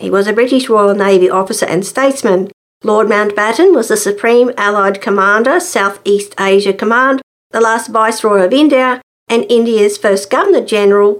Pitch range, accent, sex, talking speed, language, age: 200-255 Hz, Australian, female, 160 wpm, English, 50-69